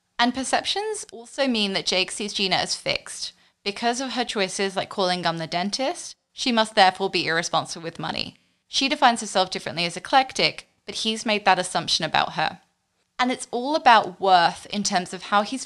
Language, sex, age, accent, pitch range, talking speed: English, female, 20-39, British, 180-235 Hz, 190 wpm